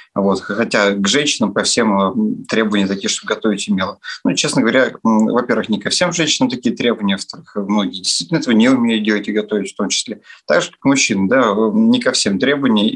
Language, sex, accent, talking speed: Russian, male, native, 205 wpm